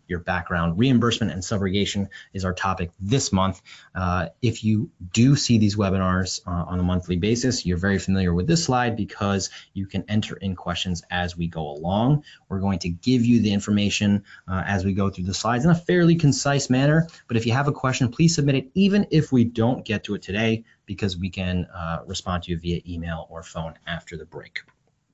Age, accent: 30-49, American